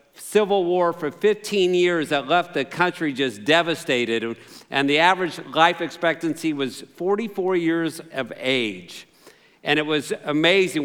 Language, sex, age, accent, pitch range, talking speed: English, male, 50-69, American, 155-195 Hz, 140 wpm